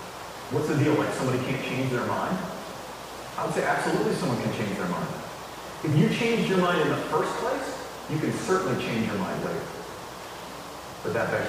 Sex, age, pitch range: male, 40-59, 150-190 Hz